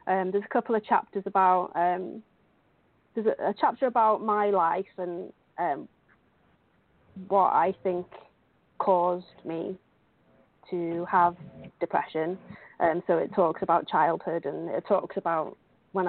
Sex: female